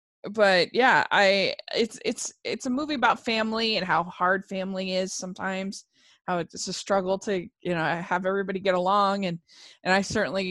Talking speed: 175 wpm